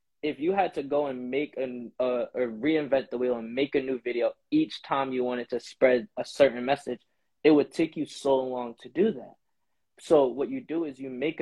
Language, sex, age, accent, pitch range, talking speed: English, male, 20-39, American, 120-135 Hz, 225 wpm